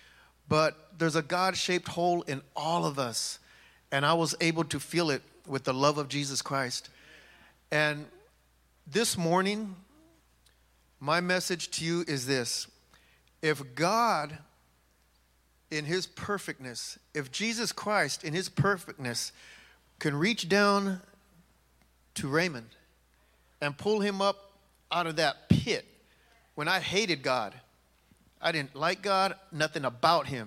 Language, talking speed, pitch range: English, 130 wpm, 120-175 Hz